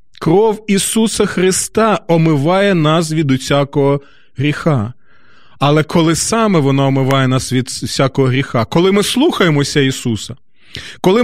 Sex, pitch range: male, 135-185 Hz